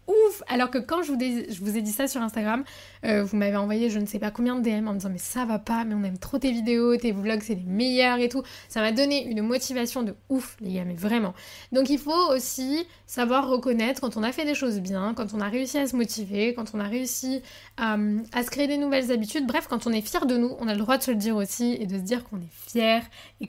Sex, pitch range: female, 215-255 Hz